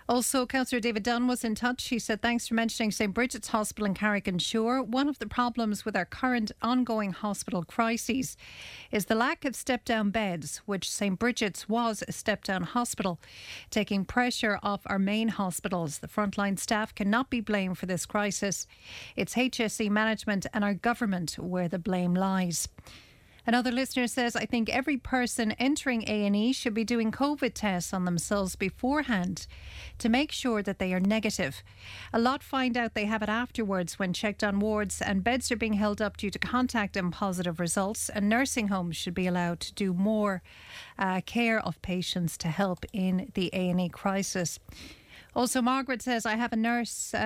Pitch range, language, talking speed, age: 190-235 Hz, English, 180 wpm, 40-59